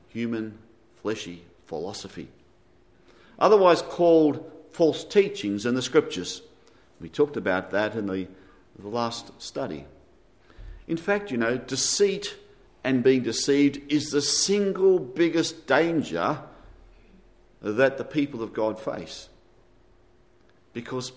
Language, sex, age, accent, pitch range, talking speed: English, male, 50-69, Australian, 95-140 Hz, 110 wpm